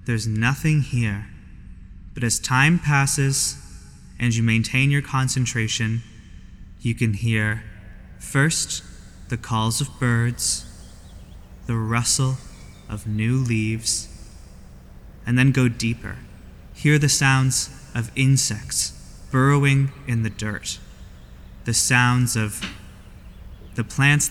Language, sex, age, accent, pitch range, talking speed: English, male, 20-39, American, 95-130 Hz, 105 wpm